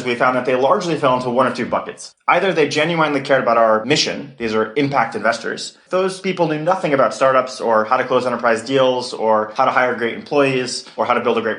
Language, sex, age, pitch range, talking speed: English, male, 30-49, 120-145 Hz, 240 wpm